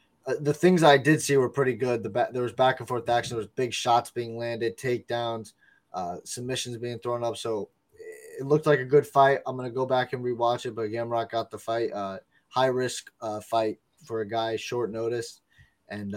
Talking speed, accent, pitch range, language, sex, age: 220 wpm, American, 115-130 Hz, English, male, 20-39